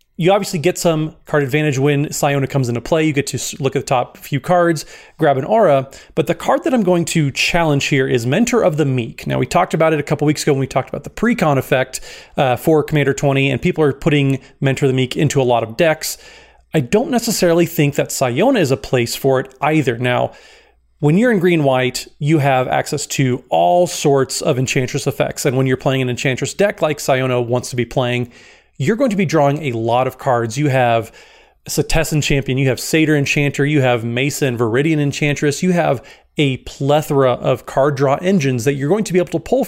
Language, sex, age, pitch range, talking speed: English, male, 30-49, 135-170 Hz, 225 wpm